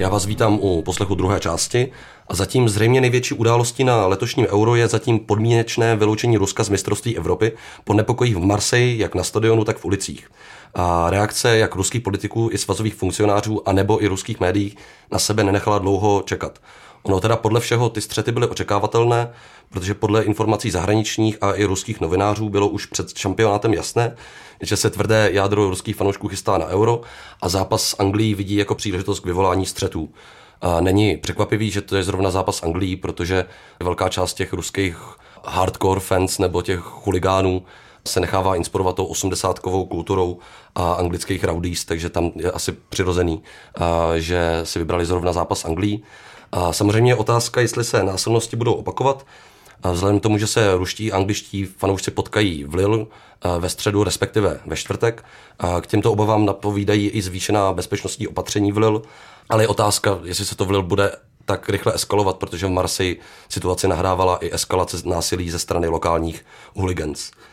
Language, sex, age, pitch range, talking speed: Czech, male, 30-49, 95-110 Hz, 165 wpm